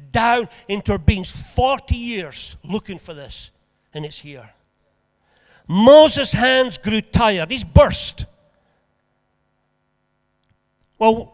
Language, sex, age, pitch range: English, male, 50-69, 180-255 Hz